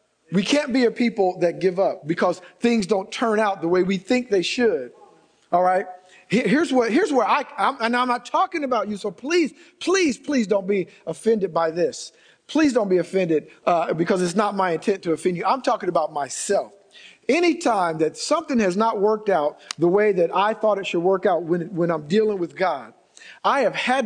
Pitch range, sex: 195-295 Hz, male